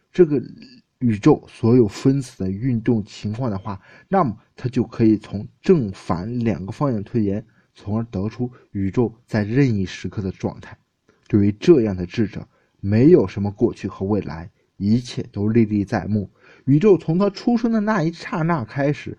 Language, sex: Chinese, male